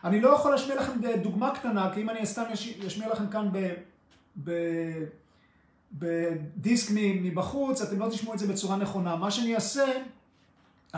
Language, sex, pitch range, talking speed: Hebrew, male, 180-230 Hz, 150 wpm